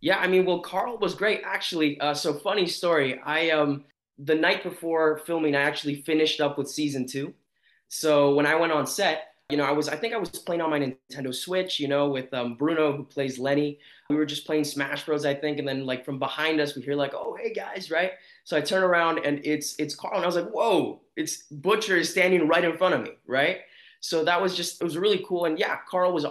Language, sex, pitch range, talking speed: English, male, 140-160 Hz, 245 wpm